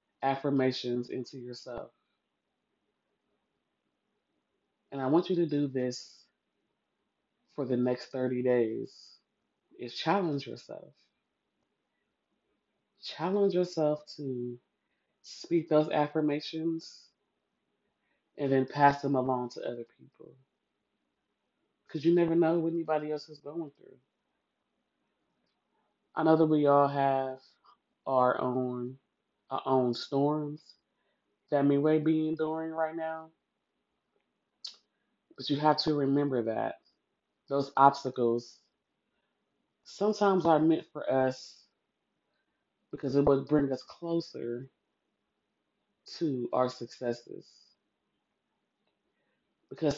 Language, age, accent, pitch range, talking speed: English, 20-39, American, 125-155 Hz, 100 wpm